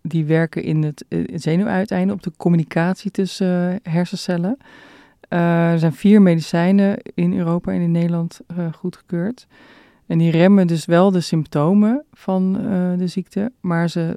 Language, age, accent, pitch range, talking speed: Dutch, 40-59, Dutch, 160-190 Hz, 135 wpm